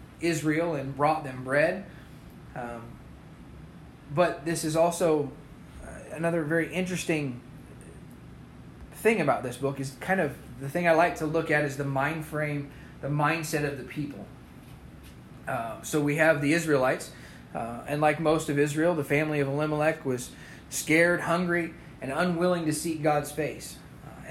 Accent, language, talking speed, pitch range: American, English, 155 wpm, 135-165 Hz